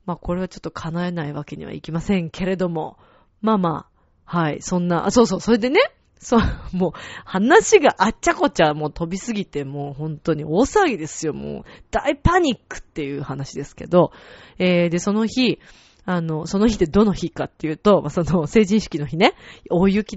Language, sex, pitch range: Japanese, female, 165-250 Hz